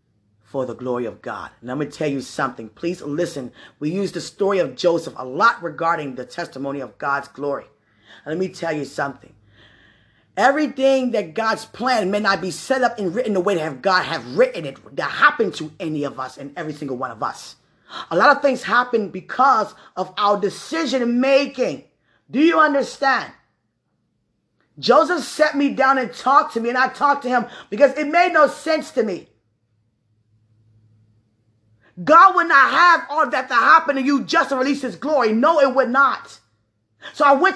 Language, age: English, 20-39